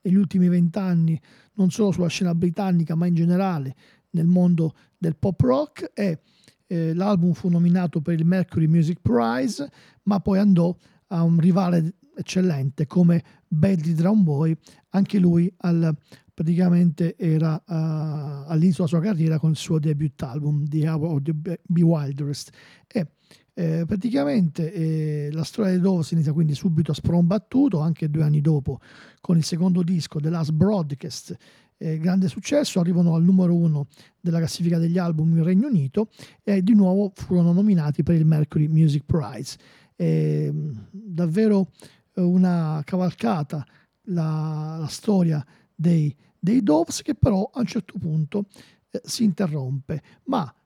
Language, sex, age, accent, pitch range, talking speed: Italian, male, 40-59, native, 155-185 Hz, 150 wpm